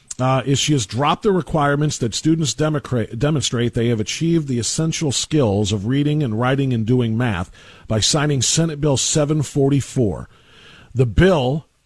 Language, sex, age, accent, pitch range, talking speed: English, male, 40-59, American, 115-155 Hz, 155 wpm